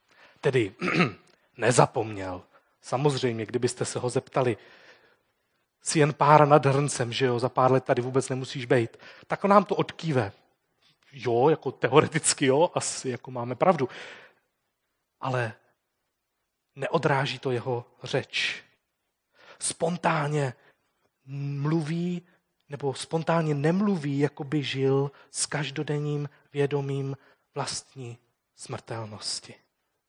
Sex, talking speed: male, 100 wpm